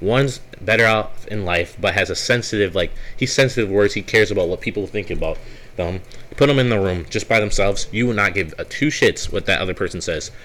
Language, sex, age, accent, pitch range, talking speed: English, male, 20-39, American, 100-130 Hz, 235 wpm